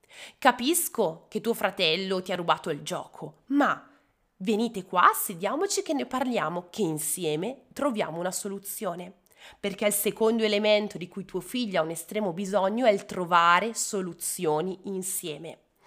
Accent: native